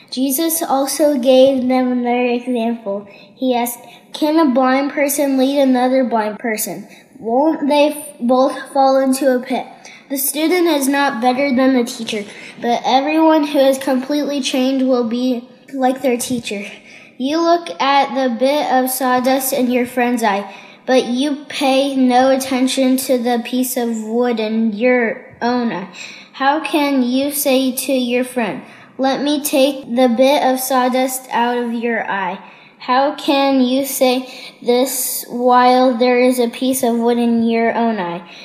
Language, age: Korean, 10-29